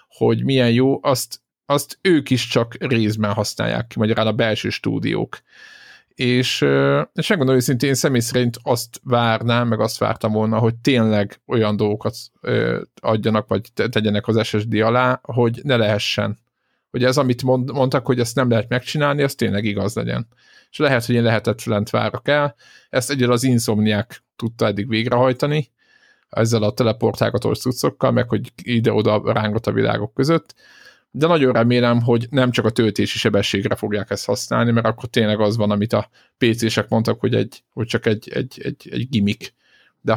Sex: male